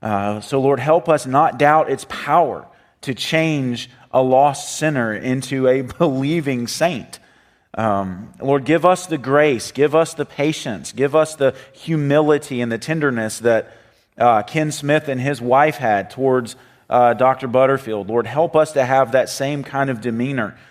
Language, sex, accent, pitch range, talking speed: English, male, American, 115-150 Hz, 165 wpm